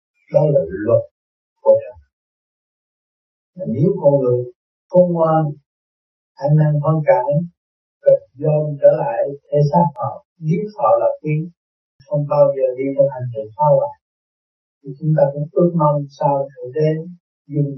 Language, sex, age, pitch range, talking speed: Vietnamese, male, 60-79, 135-180 Hz, 150 wpm